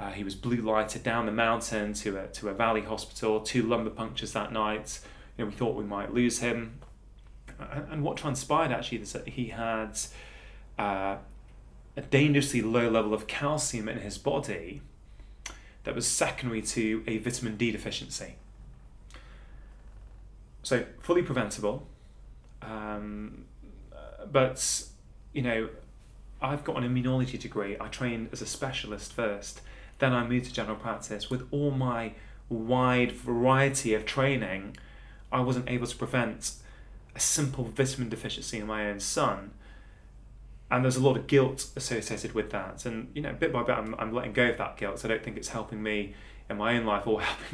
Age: 30-49